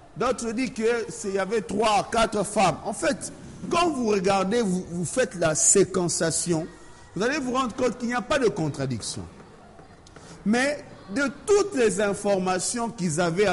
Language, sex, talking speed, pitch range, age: French, male, 160 wpm, 150-225 Hz, 50-69